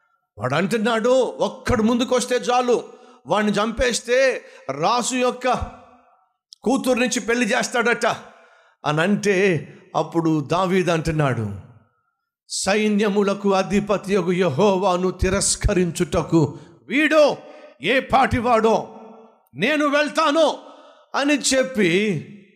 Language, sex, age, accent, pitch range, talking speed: Telugu, male, 50-69, native, 200-255 Hz, 75 wpm